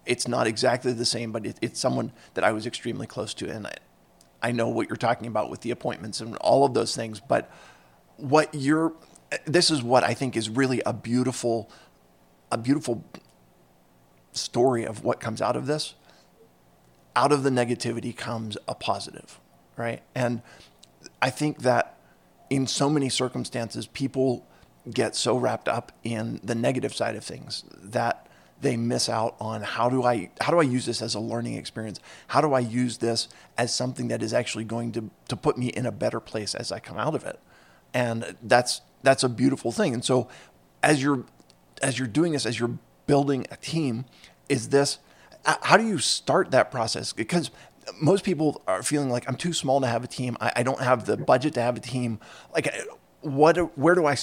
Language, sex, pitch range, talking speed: English, male, 115-135 Hz, 195 wpm